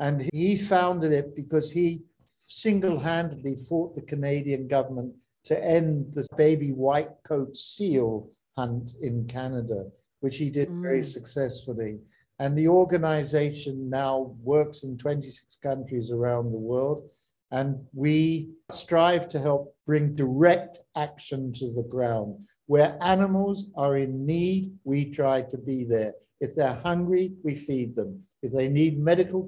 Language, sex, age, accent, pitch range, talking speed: English, male, 50-69, British, 135-165 Hz, 140 wpm